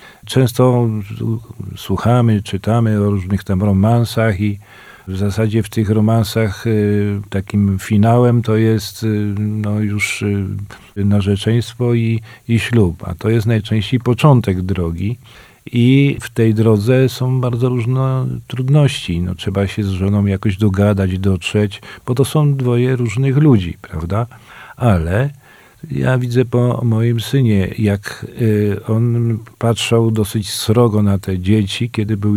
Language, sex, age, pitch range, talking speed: Polish, male, 40-59, 100-120 Hz, 125 wpm